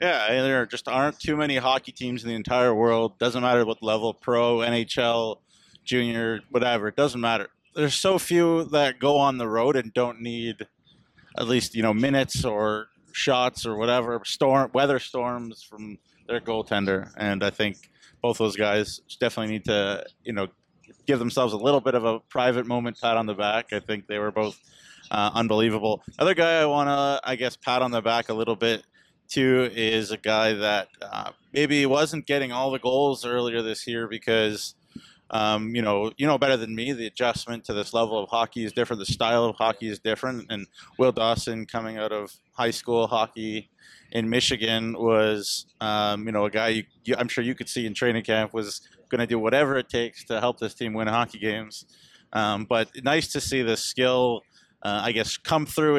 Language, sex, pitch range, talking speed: English, male, 110-125 Hz, 200 wpm